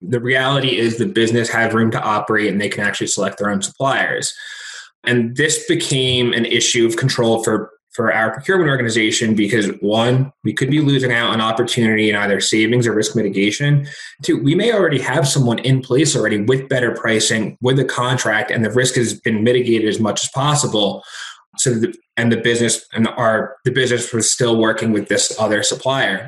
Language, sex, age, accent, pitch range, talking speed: English, male, 20-39, American, 110-130 Hz, 195 wpm